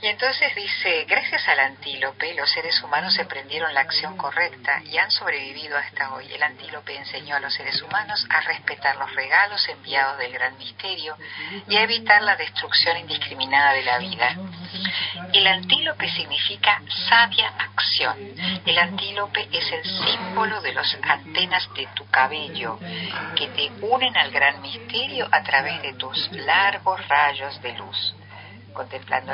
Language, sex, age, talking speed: Spanish, female, 50-69, 150 wpm